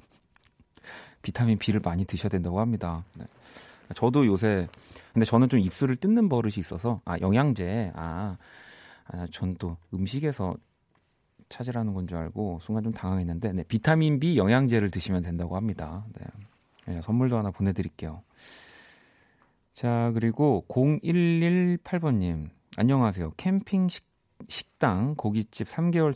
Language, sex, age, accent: Korean, male, 30-49, native